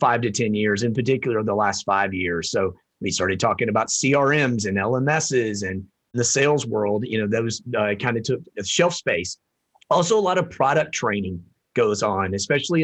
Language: English